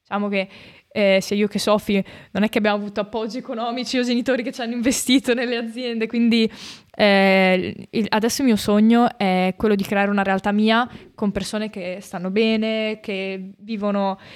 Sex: female